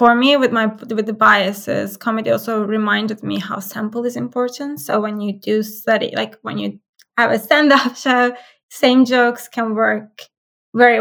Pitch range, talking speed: 220-260 Hz, 175 wpm